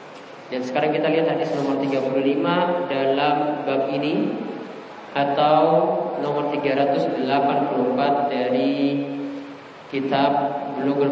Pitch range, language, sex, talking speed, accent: 140-170 Hz, English, male, 85 wpm, Indonesian